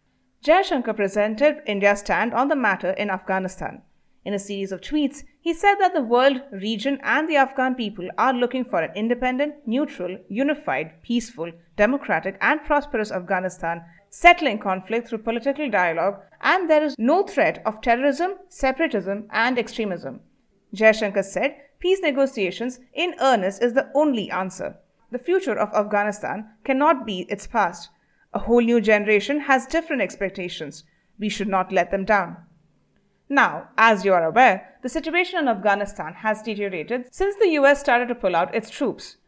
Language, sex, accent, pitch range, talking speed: English, female, Indian, 200-290 Hz, 160 wpm